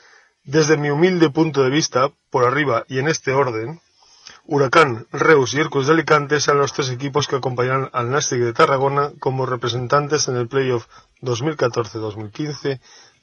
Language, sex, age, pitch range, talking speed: Spanish, male, 30-49, 130-155 Hz, 155 wpm